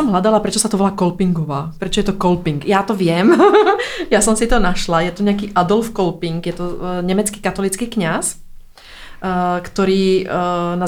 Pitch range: 180-210 Hz